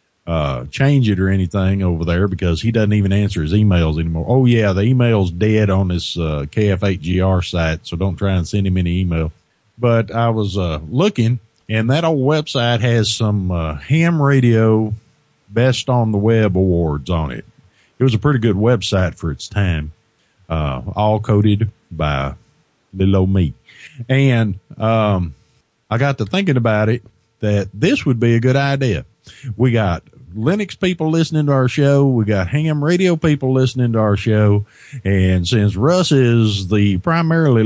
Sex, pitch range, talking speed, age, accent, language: male, 95-135 Hz, 170 wpm, 50-69, American, English